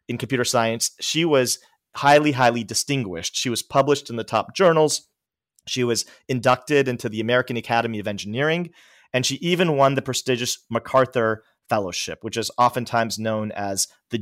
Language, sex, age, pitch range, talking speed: English, male, 40-59, 110-135 Hz, 160 wpm